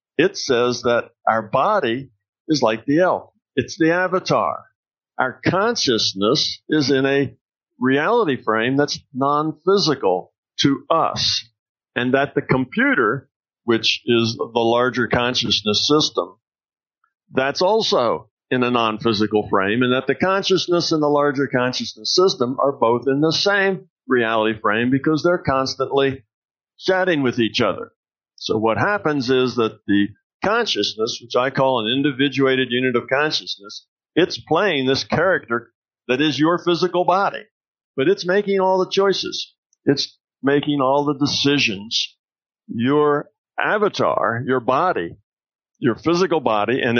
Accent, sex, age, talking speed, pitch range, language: American, male, 50-69, 135 wpm, 120-155 Hz, English